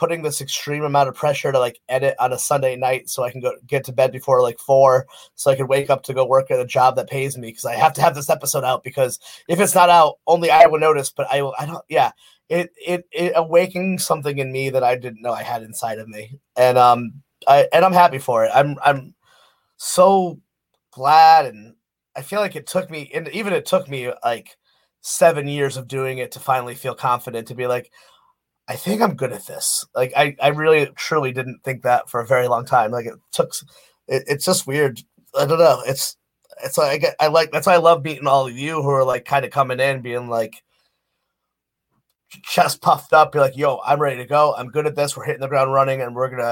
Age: 30-49